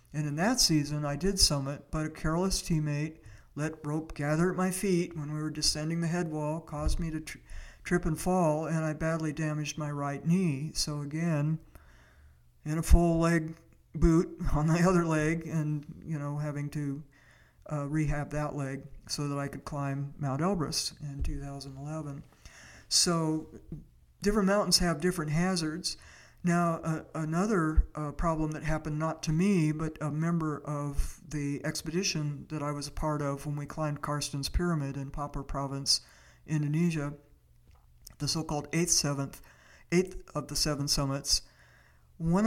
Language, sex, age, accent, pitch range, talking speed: English, male, 60-79, American, 145-165 Hz, 155 wpm